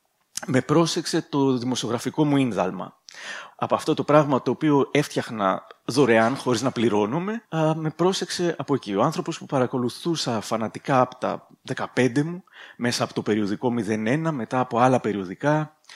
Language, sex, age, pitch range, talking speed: Greek, male, 30-49, 115-155 Hz, 150 wpm